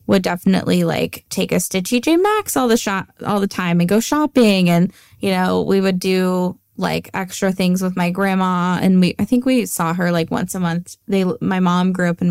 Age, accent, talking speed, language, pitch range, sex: 10-29, American, 225 wpm, English, 175-210 Hz, female